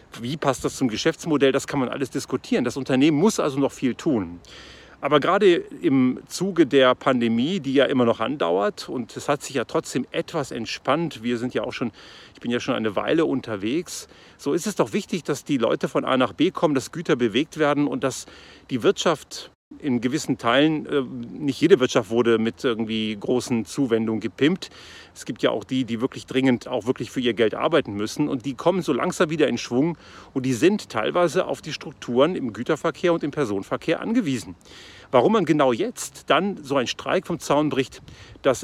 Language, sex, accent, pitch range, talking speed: German, male, German, 125-170 Hz, 200 wpm